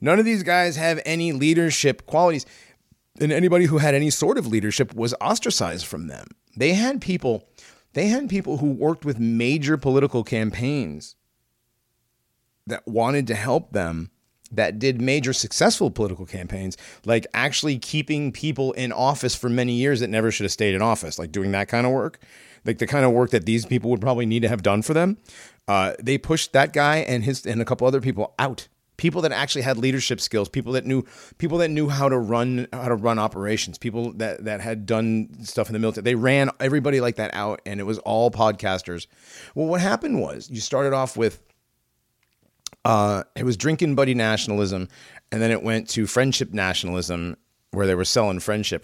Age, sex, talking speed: 30-49, male, 195 wpm